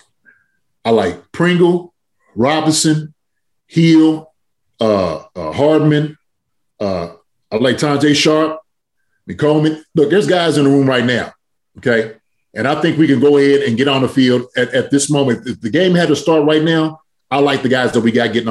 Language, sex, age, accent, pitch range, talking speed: English, male, 30-49, American, 130-175 Hz, 180 wpm